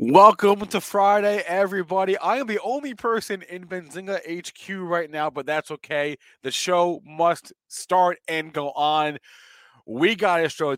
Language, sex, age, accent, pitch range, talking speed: English, male, 30-49, American, 130-185 Hz, 150 wpm